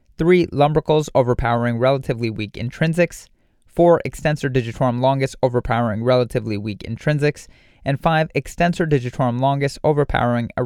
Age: 30-49